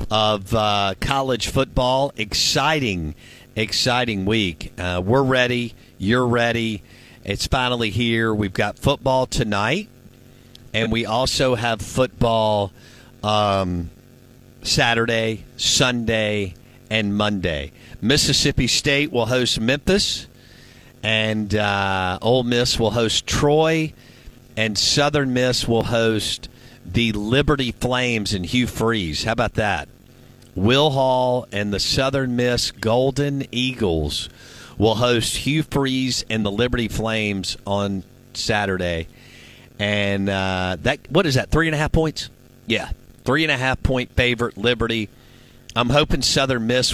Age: 50-69